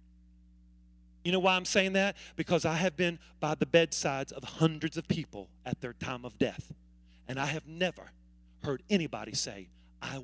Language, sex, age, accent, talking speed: English, male, 40-59, American, 175 wpm